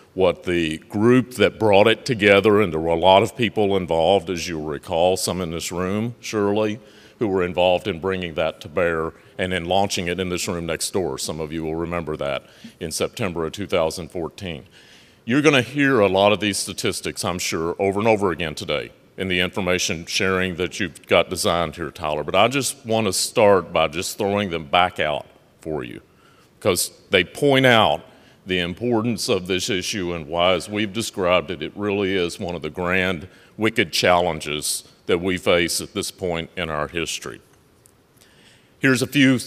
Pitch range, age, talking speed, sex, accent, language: 85-105 Hz, 40-59, 190 wpm, male, American, English